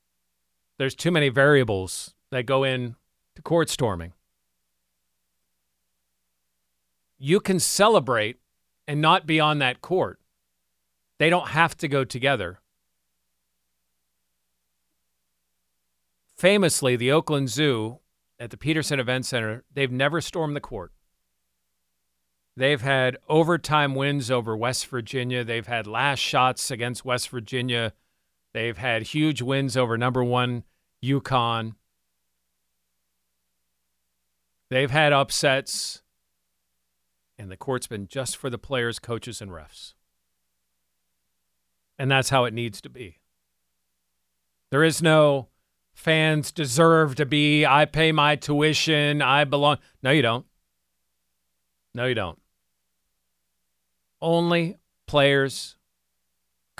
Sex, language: male, English